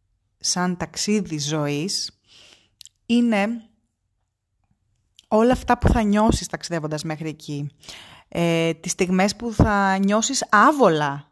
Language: Greek